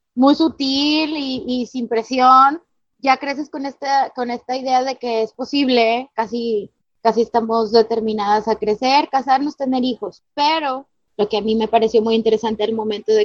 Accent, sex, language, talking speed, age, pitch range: Mexican, female, Spanish, 170 wpm, 20-39, 235-285 Hz